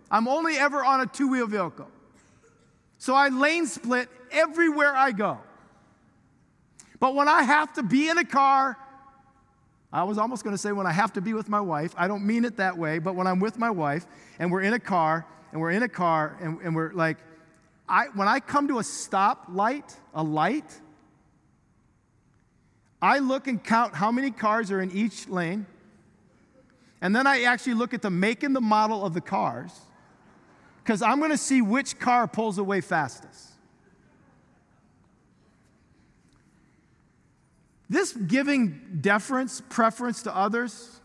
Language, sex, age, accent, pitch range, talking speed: English, male, 50-69, American, 175-245 Hz, 165 wpm